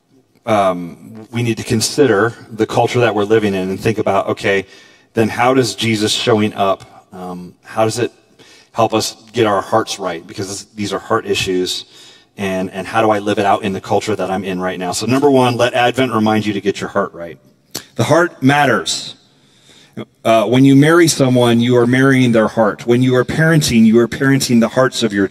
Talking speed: 210 wpm